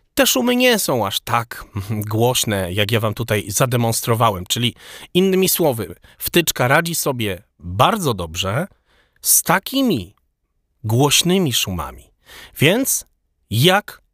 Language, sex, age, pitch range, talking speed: Polish, male, 30-49, 100-160 Hz, 110 wpm